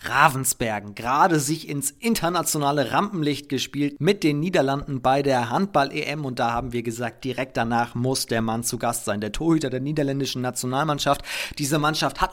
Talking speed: 165 wpm